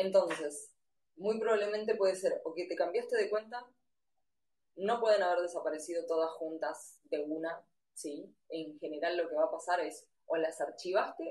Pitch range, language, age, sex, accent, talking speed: 160-240 Hz, Spanish, 20-39, female, Argentinian, 165 wpm